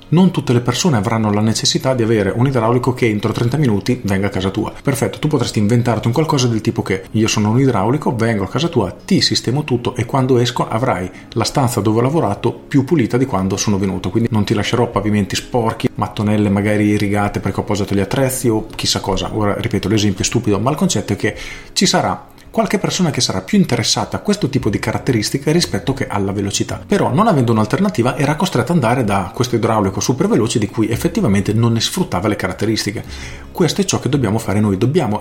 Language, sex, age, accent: Italian, male, 40-59, native